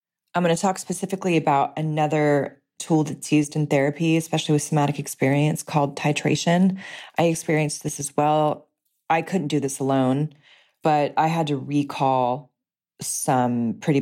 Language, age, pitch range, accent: English, 20-39, 135-155 Hz, American